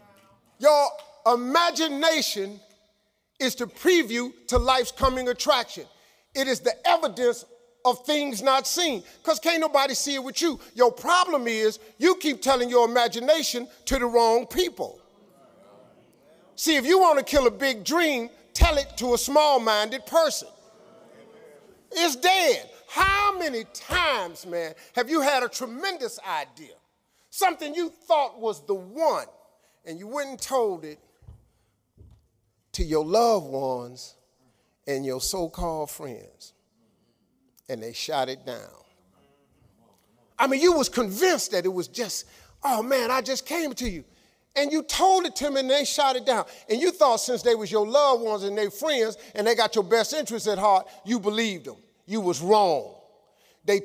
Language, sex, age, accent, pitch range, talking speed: English, male, 50-69, American, 205-290 Hz, 160 wpm